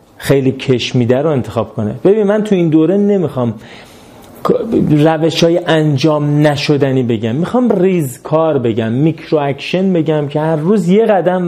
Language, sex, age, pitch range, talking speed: Persian, male, 40-59, 140-180 Hz, 145 wpm